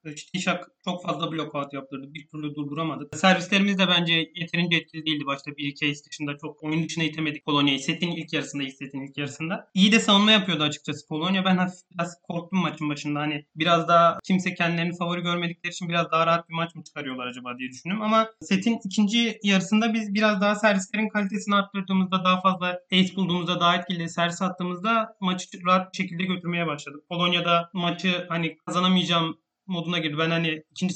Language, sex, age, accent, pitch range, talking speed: Turkish, male, 30-49, native, 160-195 Hz, 180 wpm